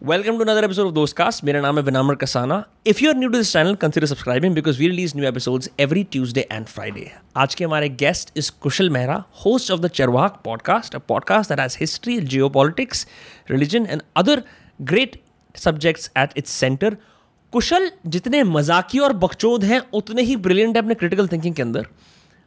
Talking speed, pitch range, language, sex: 190 wpm, 135-210 Hz, Hindi, male